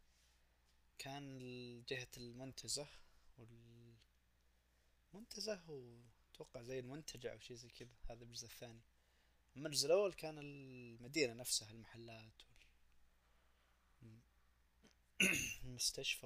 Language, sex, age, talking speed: Arabic, male, 20-39, 80 wpm